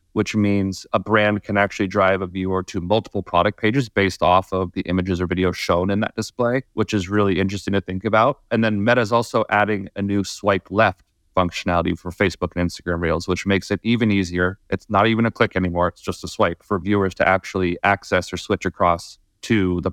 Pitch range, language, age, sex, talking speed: 90-110 Hz, English, 30-49, male, 215 wpm